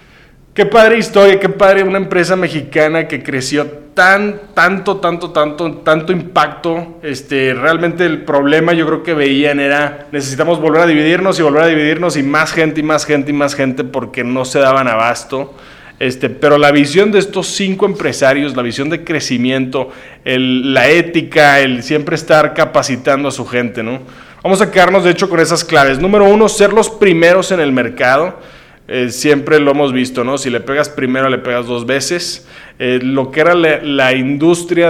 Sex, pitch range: male, 130-170 Hz